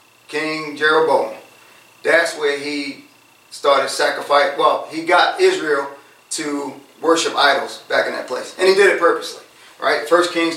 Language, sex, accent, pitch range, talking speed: English, male, American, 145-175 Hz, 150 wpm